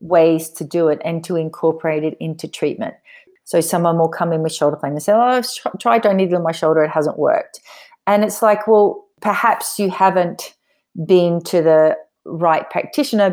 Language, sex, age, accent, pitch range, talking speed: English, female, 40-59, Australian, 175-225 Hz, 190 wpm